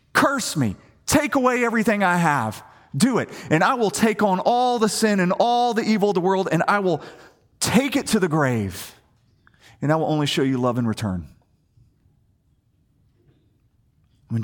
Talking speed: 175 wpm